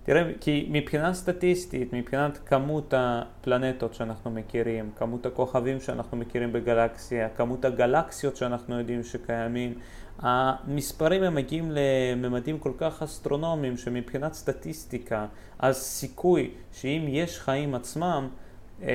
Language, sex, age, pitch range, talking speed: Hebrew, male, 30-49, 120-150 Hz, 110 wpm